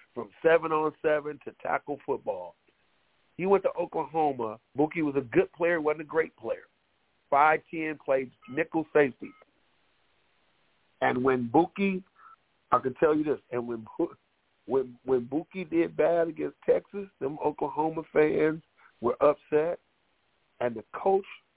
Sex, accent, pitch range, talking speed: male, American, 110-155 Hz, 140 wpm